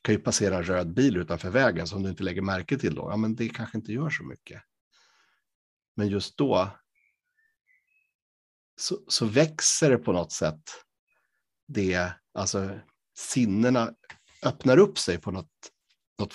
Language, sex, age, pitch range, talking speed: Swedish, male, 60-79, 95-125 Hz, 160 wpm